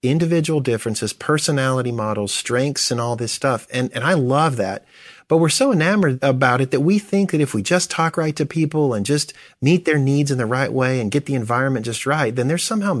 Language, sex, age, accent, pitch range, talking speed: English, male, 40-59, American, 115-160 Hz, 225 wpm